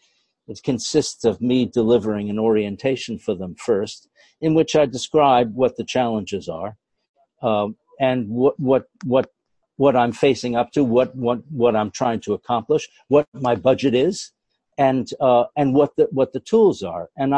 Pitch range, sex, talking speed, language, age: 115-150 Hz, male, 170 wpm, English, 60-79